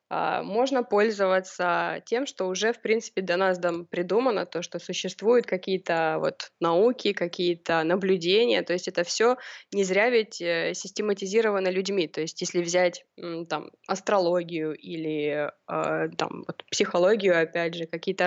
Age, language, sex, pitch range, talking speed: 20-39, Russian, female, 175-205 Hz, 135 wpm